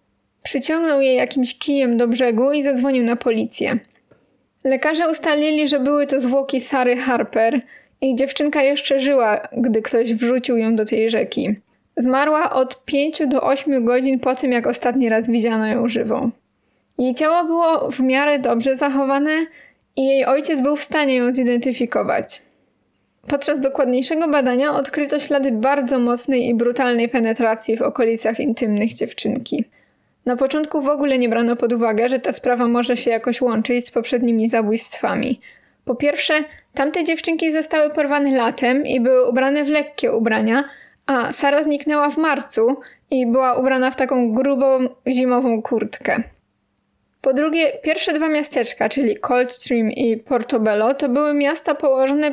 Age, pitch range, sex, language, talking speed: 10-29, 240-285 Hz, female, Polish, 150 wpm